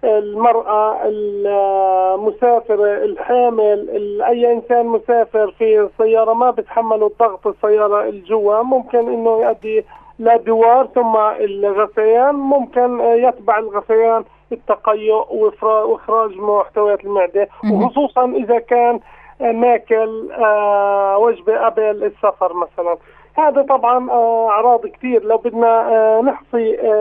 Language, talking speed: Arabic, 90 wpm